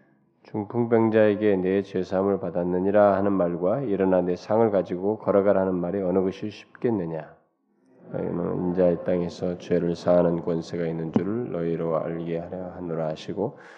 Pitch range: 85-105 Hz